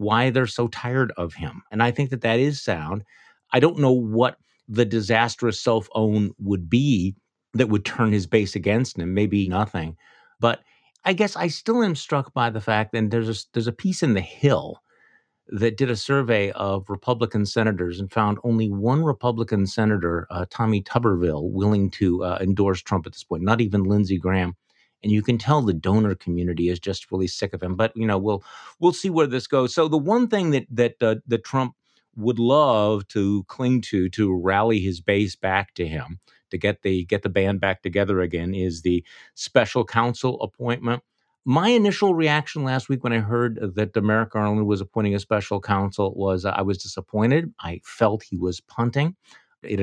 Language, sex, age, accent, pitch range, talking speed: English, male, 50-69, American, 100-120 Hz, 195 wpm